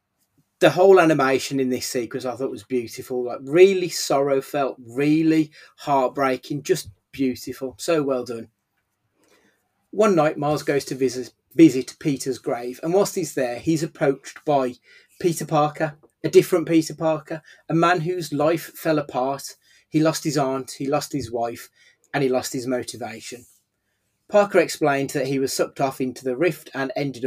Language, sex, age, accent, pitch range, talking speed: English, male, 30-49, British, 125-160 Hz, 160 wpm